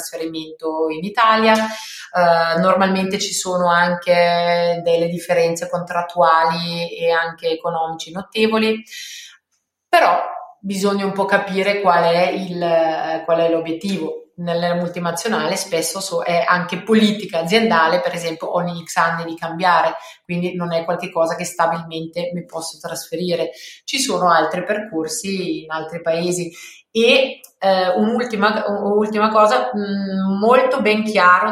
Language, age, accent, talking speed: Italian, 30-49, native, 125 wpm